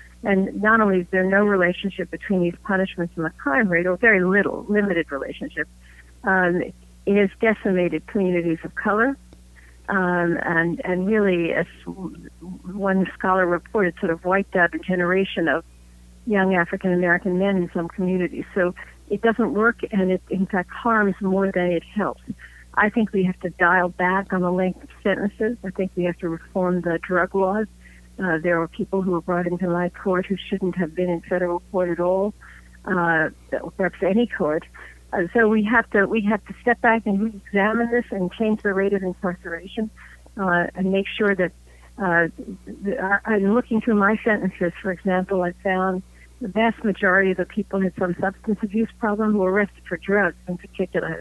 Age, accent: 50-69, American